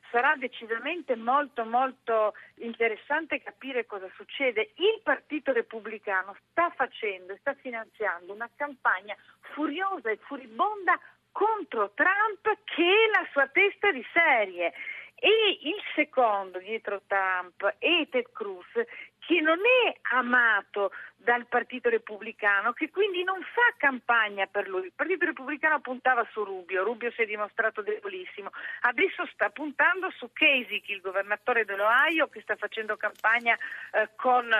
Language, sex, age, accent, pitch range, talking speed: Italian, female, 50-69, native, 215-330 Hz, 135 wpm